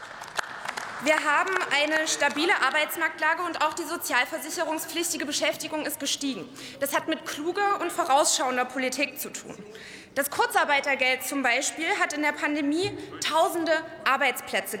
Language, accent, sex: German, German, female